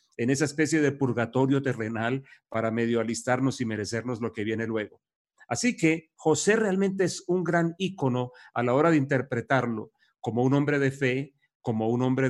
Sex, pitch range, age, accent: male, 125-150 Hz, 40-59, Mexican